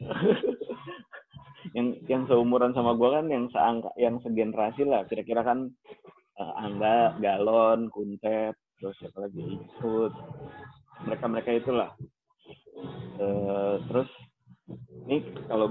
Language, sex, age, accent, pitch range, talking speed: Indonesian, male, 20-39, native, 105-130 Hz, 105 wpm